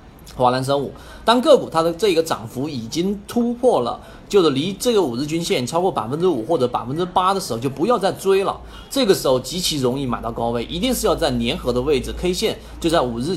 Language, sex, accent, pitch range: Chinese, male, native, 125-185 Hz